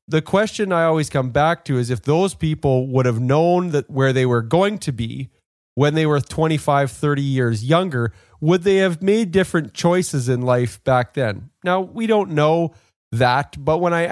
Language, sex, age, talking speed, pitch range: English, male, 30-49, 195 wpm, 130-165 Hz